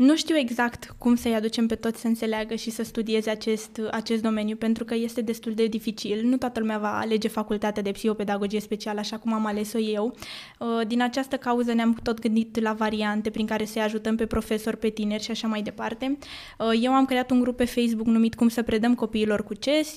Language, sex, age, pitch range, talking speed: Romanian, female, 20-39, 220-245 Hz, 210 wpm